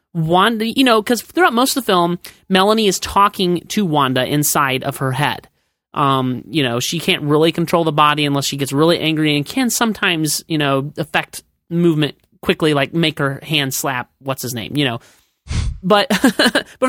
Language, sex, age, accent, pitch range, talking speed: English, male, 30-49, American, 160-255 Hz, 185 wpm